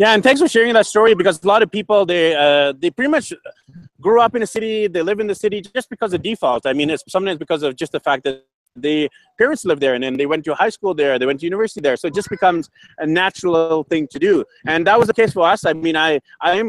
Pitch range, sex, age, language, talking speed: 160-215 Hz, male, 30-49, English, 280 wpm